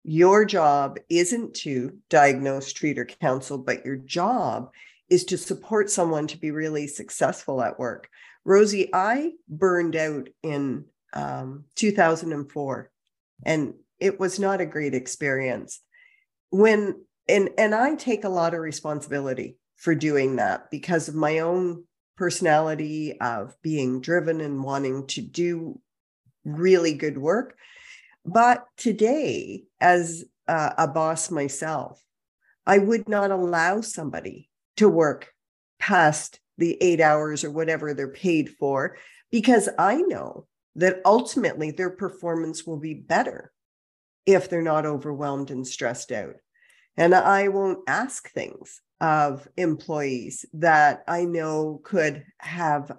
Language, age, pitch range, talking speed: English, 50-69, 145-185 Hz, 130 wpm